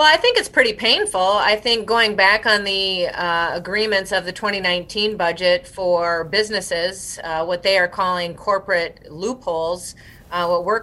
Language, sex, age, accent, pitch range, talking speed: English, female, 30-49, American, 175-225 Hz, 165 wpm